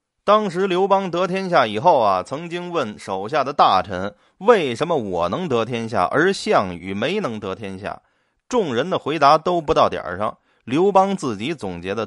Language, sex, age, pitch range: Chinese, male, 20-39, 140-210 Hz